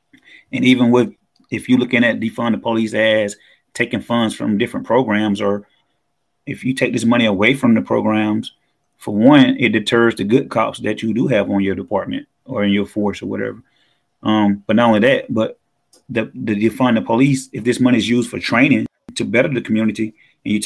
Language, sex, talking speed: English, male, 205 wpm